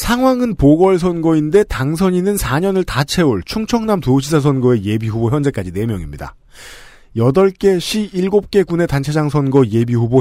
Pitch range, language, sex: 120-185 Hz, Korean, male